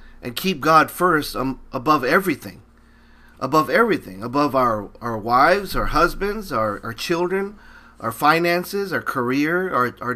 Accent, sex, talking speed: American, male, 135 wpm